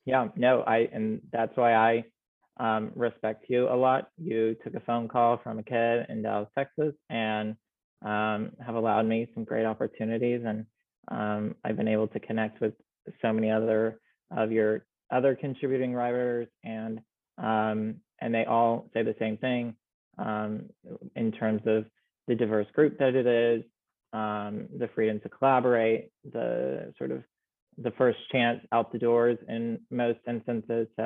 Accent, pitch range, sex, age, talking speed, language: American, 110-120 Hz, male, 20-39, 160 wpm, English